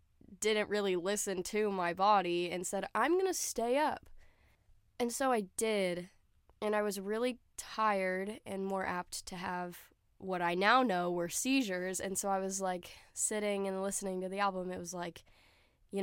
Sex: female